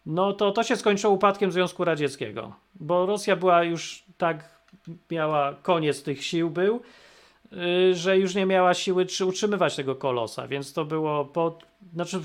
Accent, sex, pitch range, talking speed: native, male, 155-200 Hz, 155 wpm